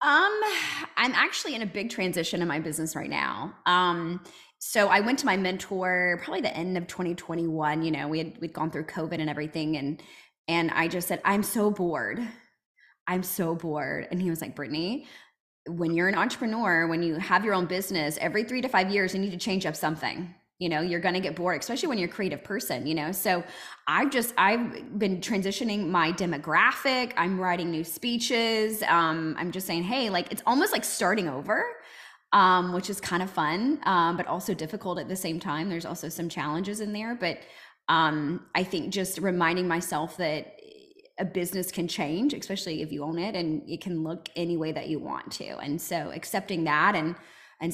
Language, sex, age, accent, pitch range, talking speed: English, female, 20-39, American, 165-200 Hz, 205 wpm